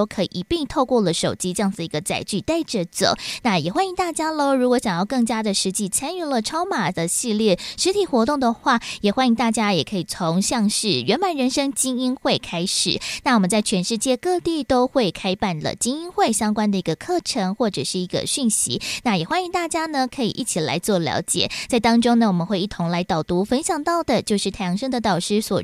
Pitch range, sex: 190-275 Hz, female